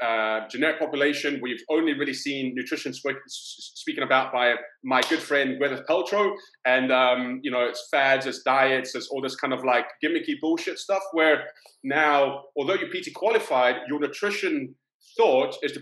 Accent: British